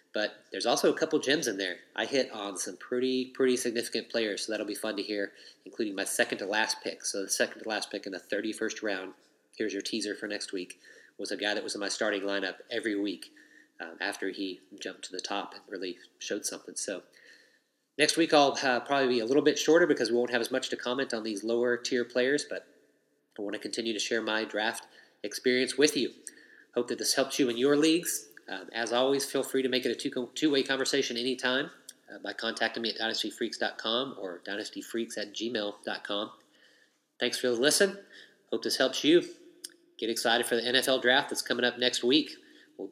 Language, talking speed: English, 205 wpm